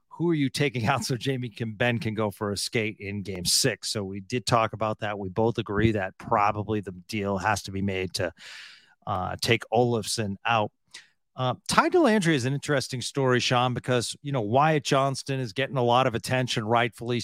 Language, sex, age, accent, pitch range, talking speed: English, male, 40-59, American, 110-135 Hz, 205 wpm